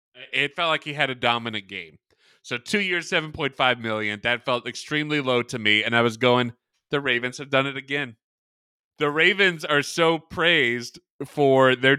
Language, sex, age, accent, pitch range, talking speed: English, male, 30-49, American, 120-150 Hz, 180 wpm